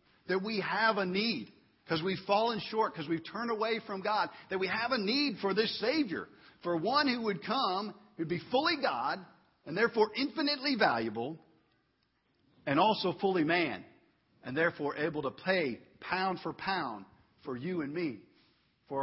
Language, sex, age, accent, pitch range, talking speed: English, male, 50-69, American, 170-220 Hz, 170 wpm